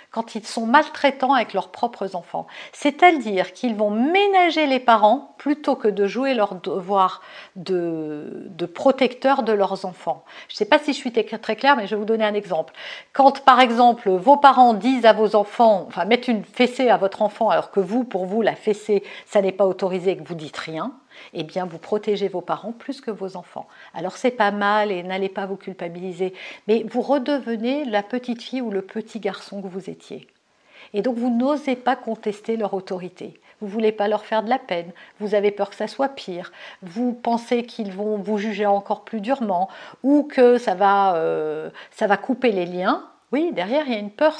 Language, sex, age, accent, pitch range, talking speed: French, female, 50-69, French, 195-250 Hz, 215 wpm